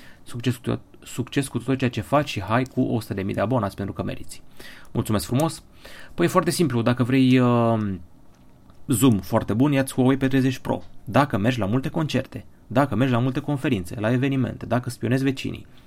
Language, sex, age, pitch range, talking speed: Romanian, male, 30-49, 105-130 Hz, 175 wpm